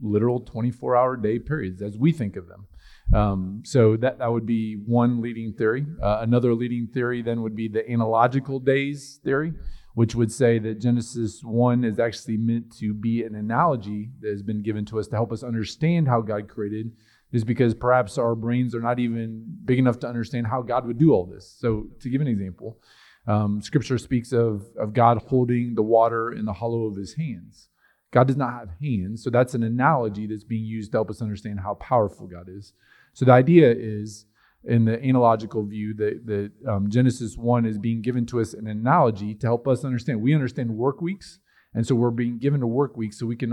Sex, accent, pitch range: male, American, 110-125 Hz